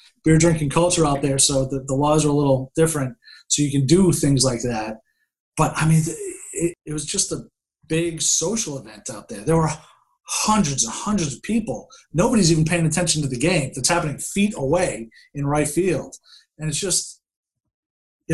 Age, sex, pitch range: 30-49, male, 140-170 Hz